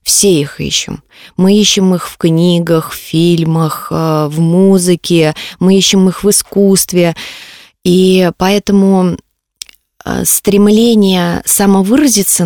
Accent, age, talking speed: native, 20-39, 100 wpm